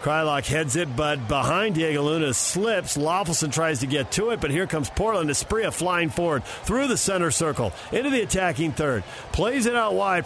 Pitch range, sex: 125-155 Hz, male